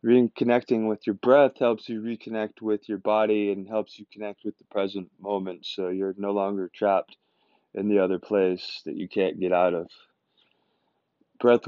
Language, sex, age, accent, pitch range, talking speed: English, male, 20-39, American, 95-115 Hz, 175 wpm